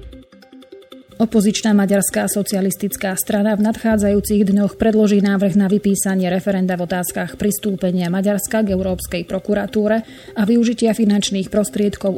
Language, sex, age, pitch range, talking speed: Slovak, female, 30-49, 185-210 Hz, 115 wpm